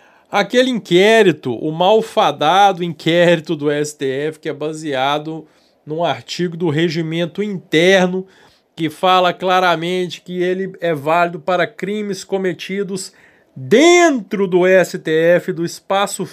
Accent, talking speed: Brazilian, 110 wpm